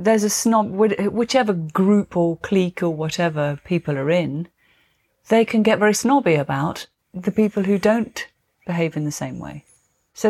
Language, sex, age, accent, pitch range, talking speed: English, female, 40-59, British, 155-200 Hz, 165 wpm